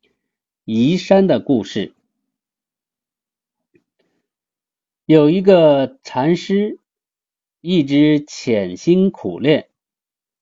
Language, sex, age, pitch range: Chinese, male, 50-69, 120-190 Hz